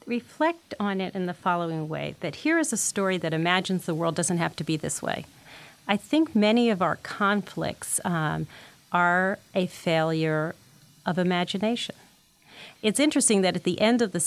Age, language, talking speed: 40-59, English, 175 wpm